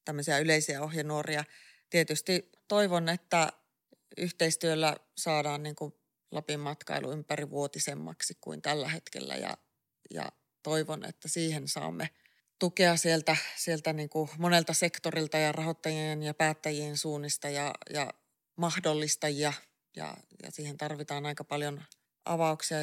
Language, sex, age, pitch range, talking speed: Finnish, female, 30-49, 150-165 Hz, 120 wpm